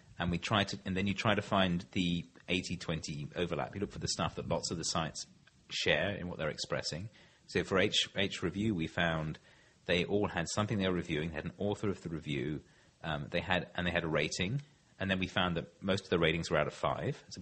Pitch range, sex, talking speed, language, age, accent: 80-105 Hz, male, 245 wpm, English, 30-49, British